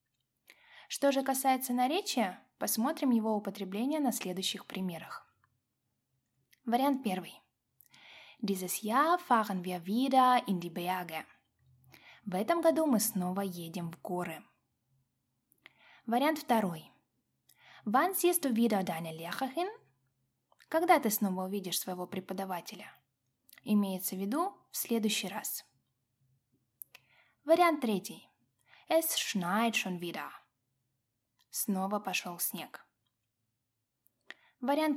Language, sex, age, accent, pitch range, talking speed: Russian, female, 20-39, native, 175-250 Hz, 85 wpm